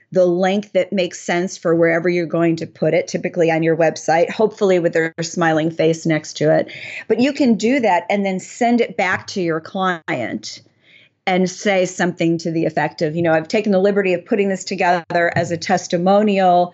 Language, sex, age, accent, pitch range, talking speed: English, female, 40-59, American, 165-200 Hz, 205 wpm